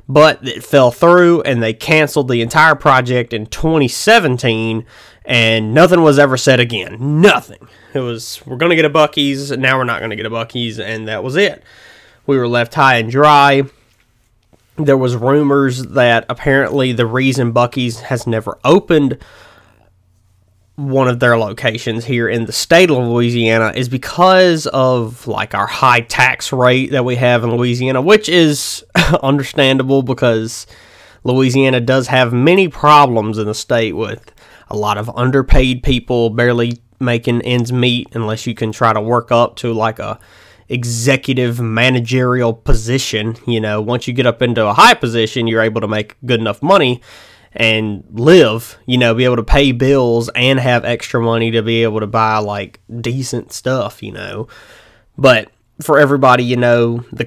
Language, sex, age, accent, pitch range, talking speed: English, male, 20-39, American, 115-135 Hz, 165 wpm